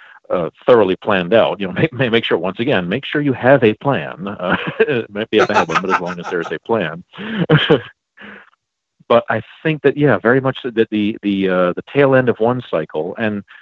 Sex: male